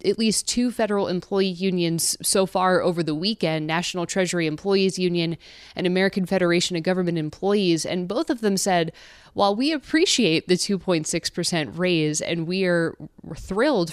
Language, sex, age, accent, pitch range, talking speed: English, female, 20-39, American, 165-200 Hz, 150 wpm